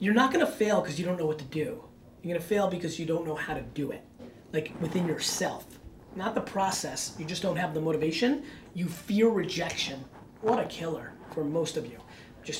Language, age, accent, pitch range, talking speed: English, 30-49, American, 155-215 Hz, 215 wpm